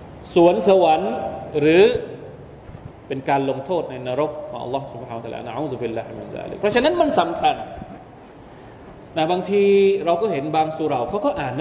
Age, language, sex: 20-39, Thai, male